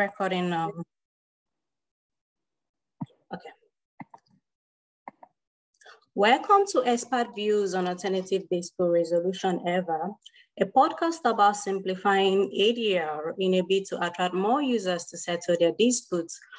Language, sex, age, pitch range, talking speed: English, female, 20-39, 175-205 Hz, 100 wpm